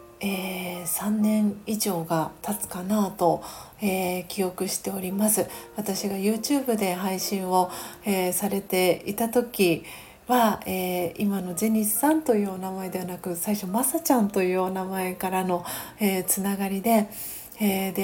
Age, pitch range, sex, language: 40-59, 185-210 Hz, female, Japanese